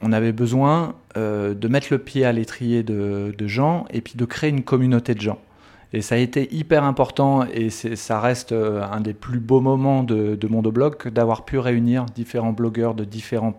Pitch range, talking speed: 110-130 Hz, 205 wpm